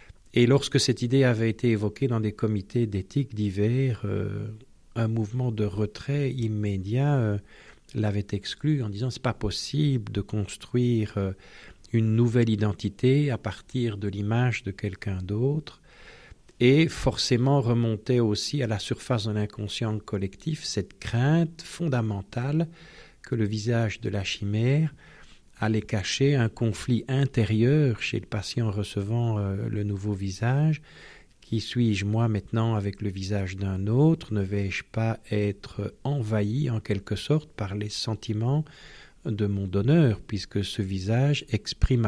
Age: 50-69